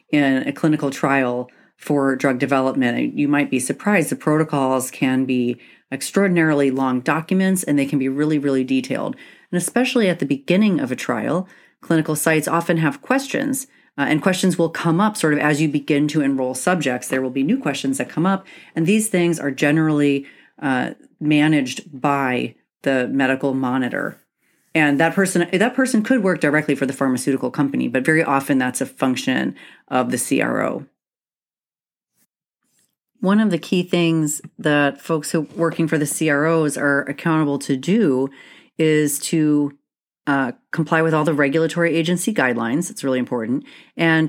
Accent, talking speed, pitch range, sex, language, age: American, 165 wpm, 140-170 Hz, female, English, 30-49